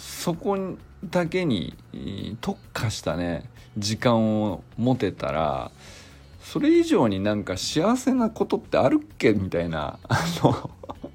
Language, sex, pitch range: Japanese, male, 95-150 Hz